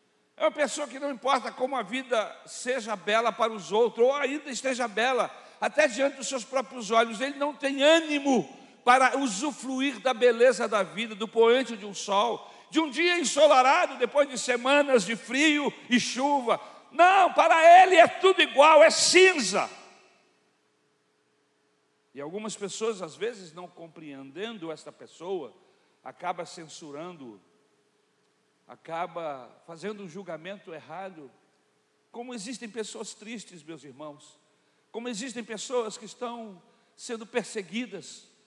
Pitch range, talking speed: 220-295 Hz, 135 wpm